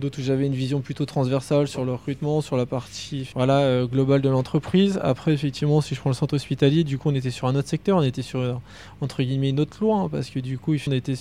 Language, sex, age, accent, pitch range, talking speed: French, male, 20-39, French, 130-155 Hz, 255 wpm